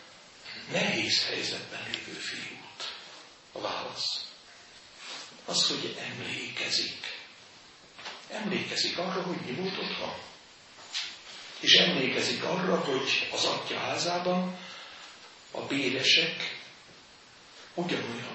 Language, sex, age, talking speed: Hungarian, male, 60-79, 80 wpm